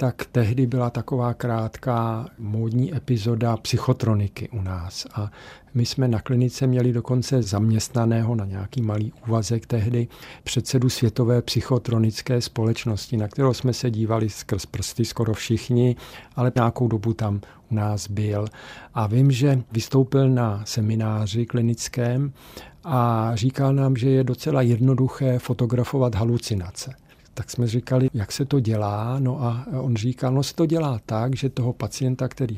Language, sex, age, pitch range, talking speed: Czech, male, 50-69, 110-130 Hz, 145 wpm